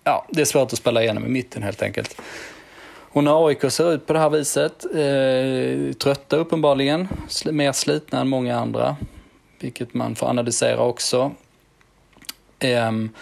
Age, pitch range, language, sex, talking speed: 20-39, 110-130 Hz, Swedish, male, 150 wpm